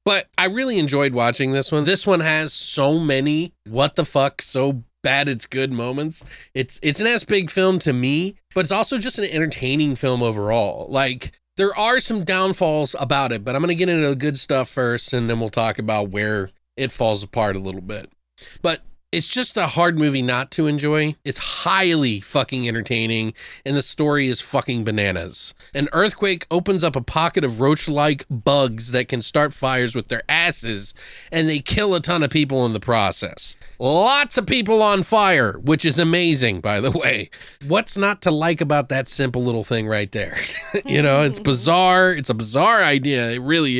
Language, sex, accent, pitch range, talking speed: English, male, American, 120-165 Hz, 195 wpm